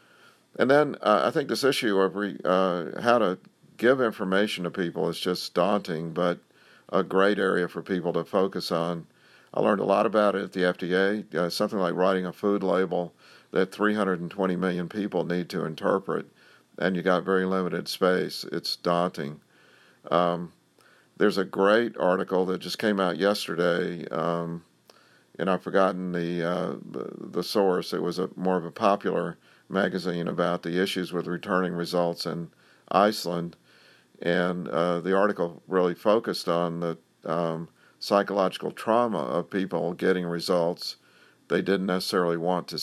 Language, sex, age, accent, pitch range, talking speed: English, male, 50-69, American, 85-95 Hz, 160 wpm